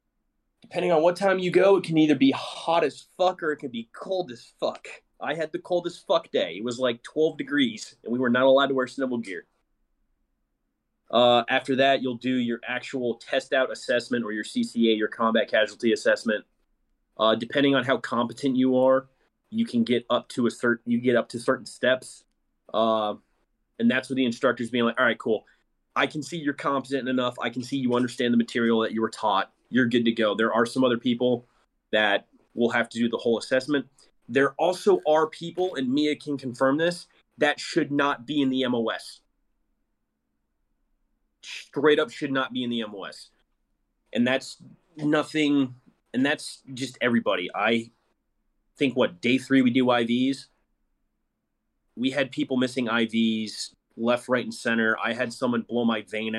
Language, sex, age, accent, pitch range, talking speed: English, male, 30-49, American, 115-145 Hz, 185 wpm